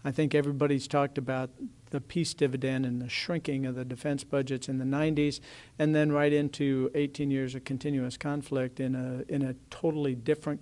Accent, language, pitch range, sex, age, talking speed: American, English, 130-150 Hz, male, 50-69, 185 wpm